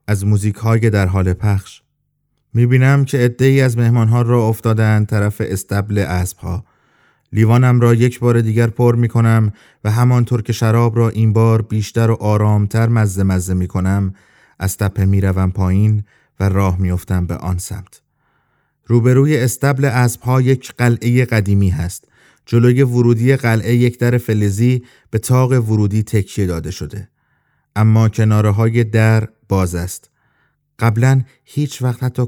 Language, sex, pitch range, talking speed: Persian, male, 95-120 Hz, 150 wpm